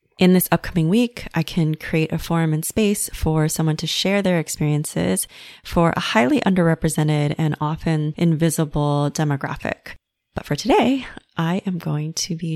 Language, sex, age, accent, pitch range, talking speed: English, female, 20-39, American, 150-175 Hz, 160 wpm